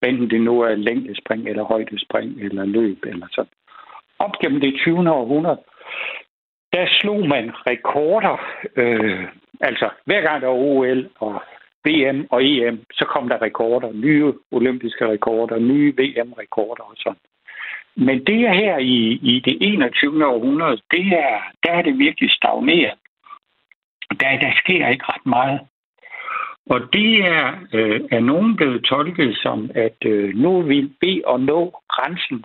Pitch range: 115-165 Hz